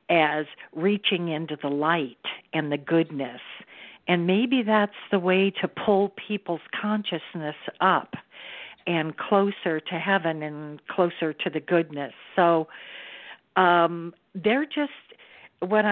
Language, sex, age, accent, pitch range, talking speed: English, female, 50-69, American, 160-200 Hz, 120 wpm